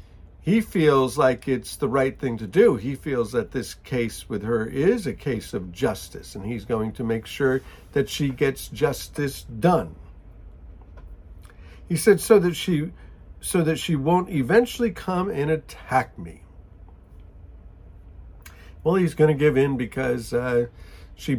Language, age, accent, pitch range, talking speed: English, 50-69, American, 95-160 Hz, 155 wpm